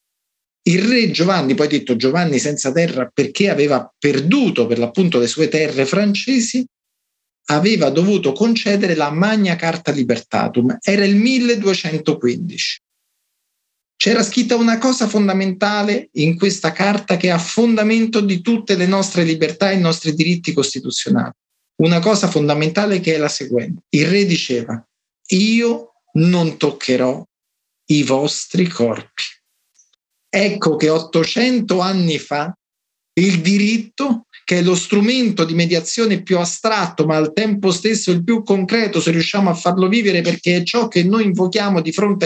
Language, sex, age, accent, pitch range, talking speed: Italian, male, 50-69, native, 155-210 Hz, 140 wpm